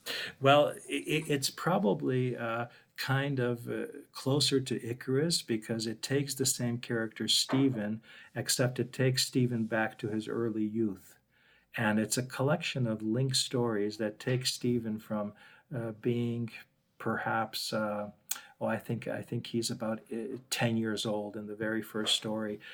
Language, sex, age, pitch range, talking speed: English, male, 50-69, 110-125 Hz, 150 wpm